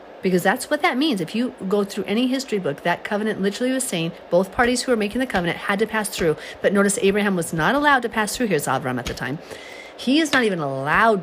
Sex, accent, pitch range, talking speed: female, American, 165-215 Hz, 250 wpm